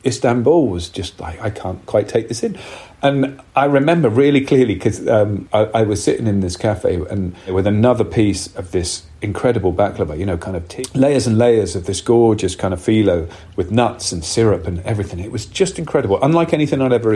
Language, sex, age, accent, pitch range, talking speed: English, male, 40-59, British, 105-145 Hz, 210 wpm